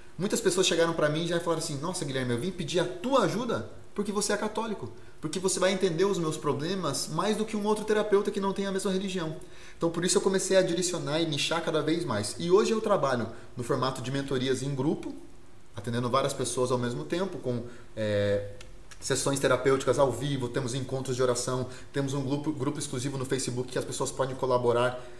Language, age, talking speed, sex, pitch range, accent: Portuguese, 30-49, 215 wpm, male, 120-175 Hz, Brazilian